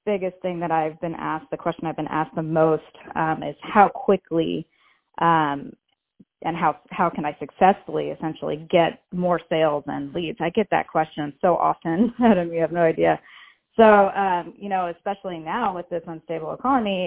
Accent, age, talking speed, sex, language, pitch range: American, 30-49, 170 wpm, female, English, 165-195 Hz